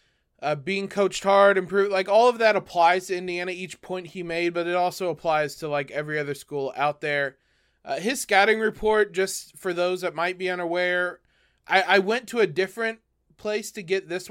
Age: 20-39